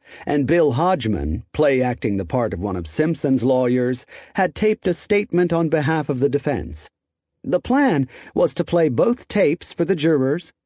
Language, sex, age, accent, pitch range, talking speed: English, male, 40-59, American, 115-175 Hz, 170 wpm